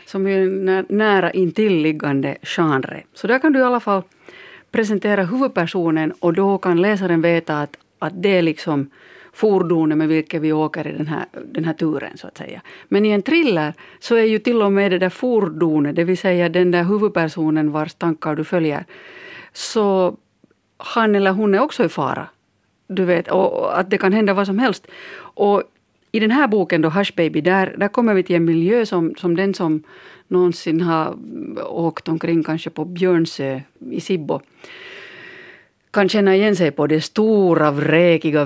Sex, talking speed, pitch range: female, 180 wpm, 160-205 Hz